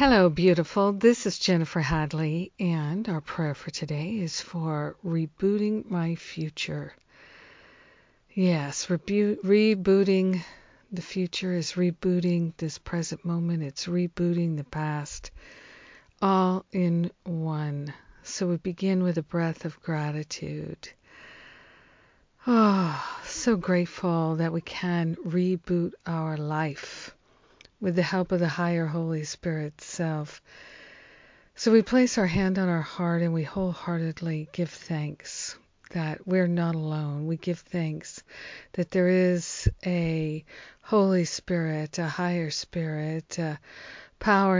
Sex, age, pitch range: female, 50-69, 160-185 Hz